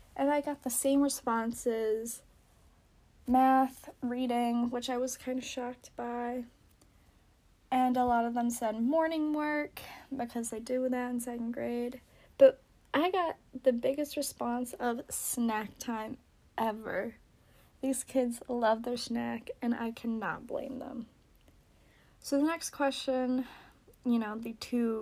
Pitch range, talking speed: 225-260 Hz, 140 wpm